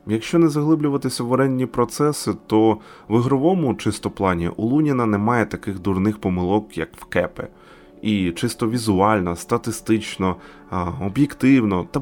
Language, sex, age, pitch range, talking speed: Ukrainian, male, 20-39, 95-130 Hz, 130 wpm